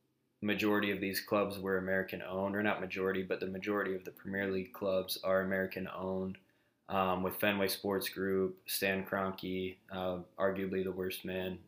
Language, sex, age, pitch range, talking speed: English, male, 20-39, 95-105 Hz, 160 wpm